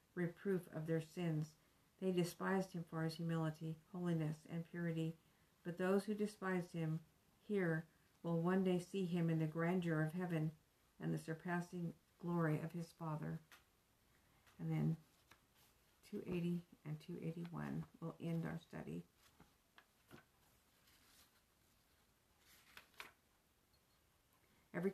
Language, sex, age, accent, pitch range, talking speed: English, female, 50-69, American, 160-180 Hz, 110 wpm